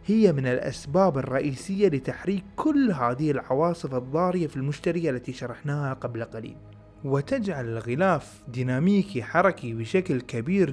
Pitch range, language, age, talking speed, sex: 120-185 Hz, Arabic, 30-49, 115 wpm, male